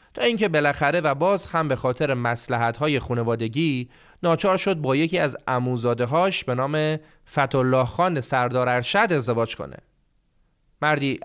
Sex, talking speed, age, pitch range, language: male, 135 wpm, 30-49, 125-180 Hz, Persian